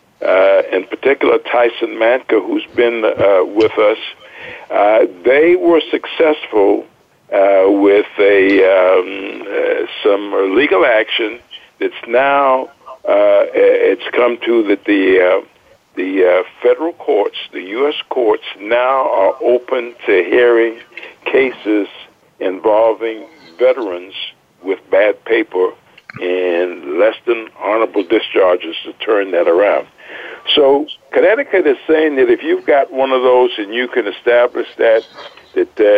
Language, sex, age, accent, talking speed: English, male, 60-79, American, 130 wpm